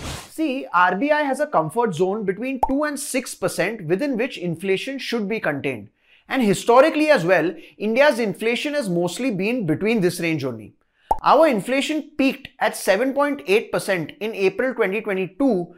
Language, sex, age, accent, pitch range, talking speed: English, male, 20-39, Indian, 175-265 Hz, 140 wpm